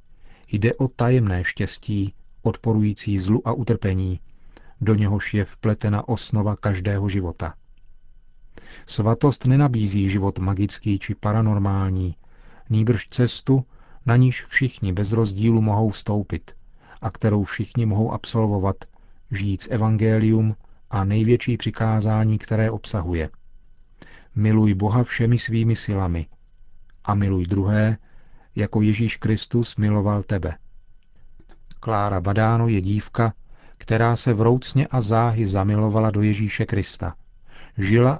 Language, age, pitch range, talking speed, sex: Czech, 40-59, 100-115 Hz, 110 wpm, male